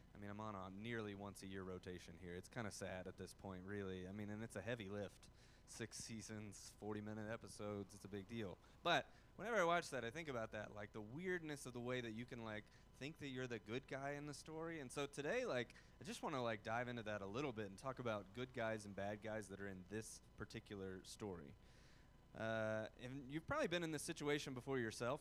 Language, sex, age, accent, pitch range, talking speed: English, male, 30-49, American, 105-130 Hz, 245 wpm